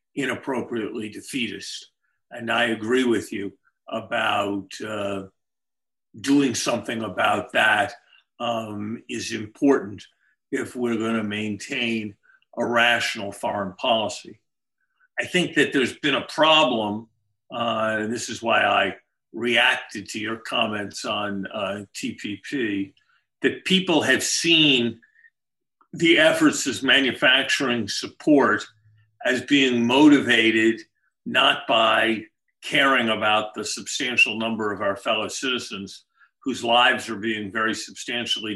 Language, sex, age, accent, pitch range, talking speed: English, male, 50-69, American, 105-130 Hz, 115 wpm